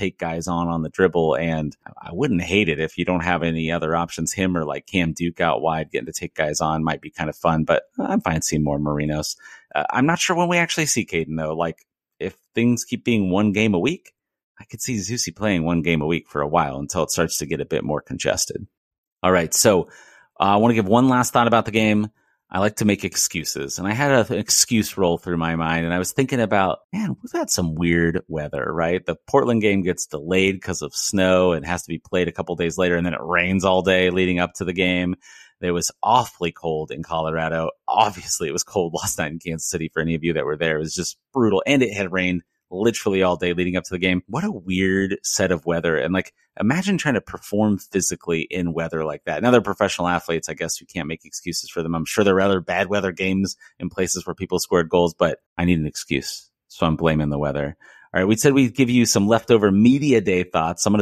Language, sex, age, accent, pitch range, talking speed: English, male, 30-49, American, 85-105 Hz, 250 wpm